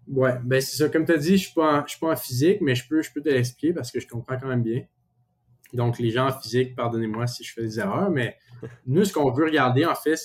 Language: French